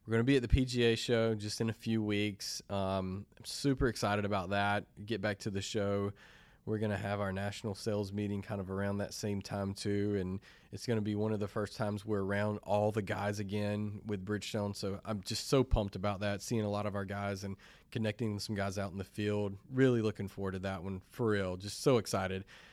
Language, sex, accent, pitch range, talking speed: English, male, American, 100-115 Hz, 235 wpm